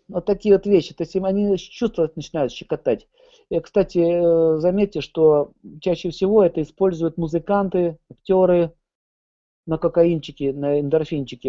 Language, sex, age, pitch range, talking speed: Russian, male, 40-59, 155-200 Hz, 125 wpm